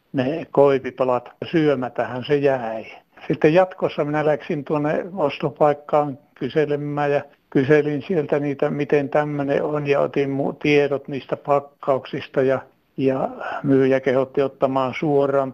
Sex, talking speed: male, 120 wpm